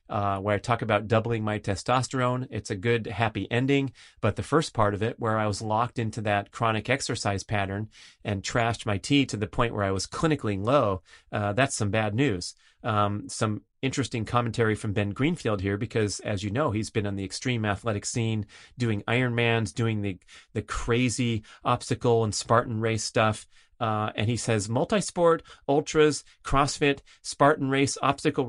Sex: male